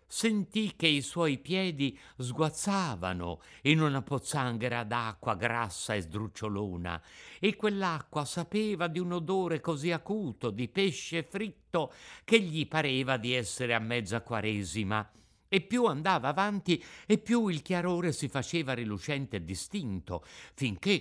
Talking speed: 130 wpm